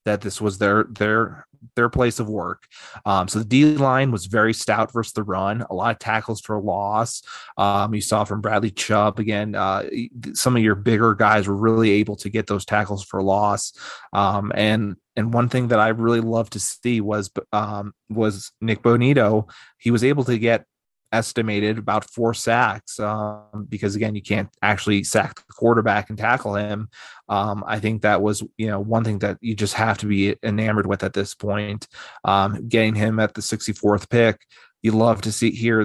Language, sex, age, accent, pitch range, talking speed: English, male, 30-49, American, 105-115 Hz, 195 wpm